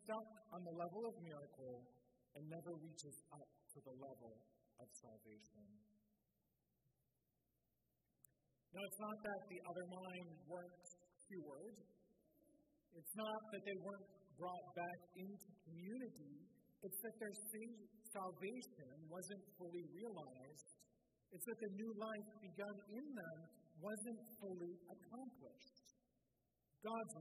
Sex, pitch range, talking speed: male, 135-200 Hz, 115 wpm